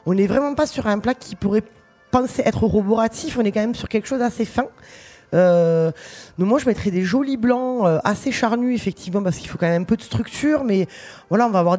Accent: French